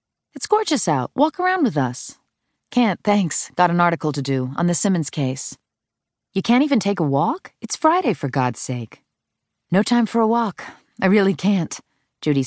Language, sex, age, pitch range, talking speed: English, female, 40-59, 135-185 Hz, 185 wpm